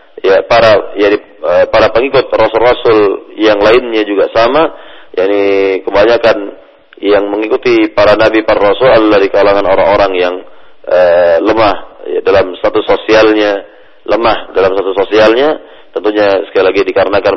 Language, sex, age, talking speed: Malay, male, 40-59, 130 wpm